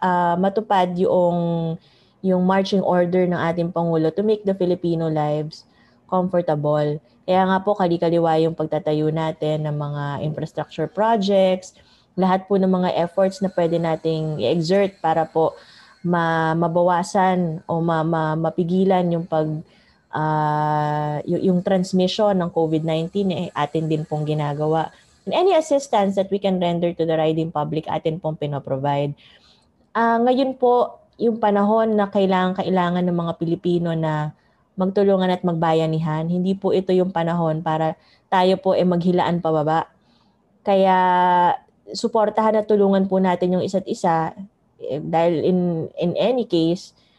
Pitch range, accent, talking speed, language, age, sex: 160-195 Hz, Filipino, 145 wpm, English, 20-39, female